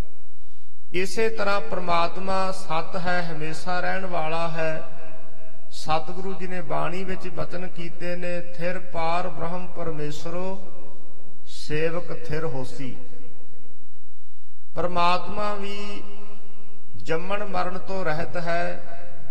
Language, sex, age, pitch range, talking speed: English, male, 50-69, 155-185 Hz, 95 wpm